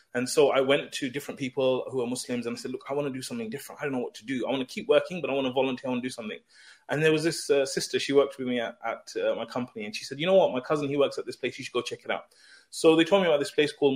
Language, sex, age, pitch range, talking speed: English, male, 20-39, 125-145 Hz, 350 wpm